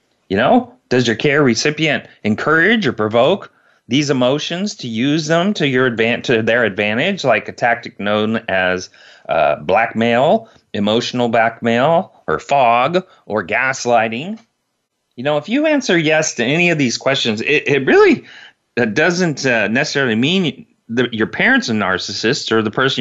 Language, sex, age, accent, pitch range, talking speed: English, male, 30-49, American, 115-155 Hz, 150 wpm